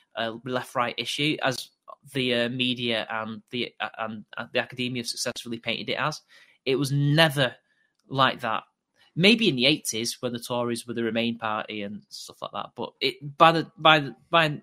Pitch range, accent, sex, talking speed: 120-155 Hz, British, male, 185 wpm